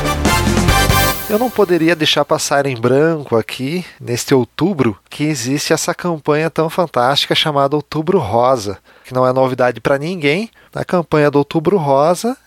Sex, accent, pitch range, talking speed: male, Brazilian, 135-160 Hz, 145 wpm